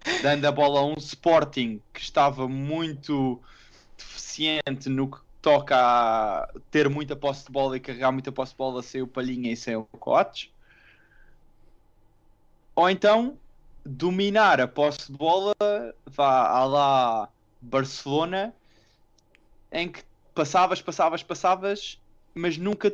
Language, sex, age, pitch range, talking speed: Portuguese, male, 20-39, 130-205 Hz, 130 wpm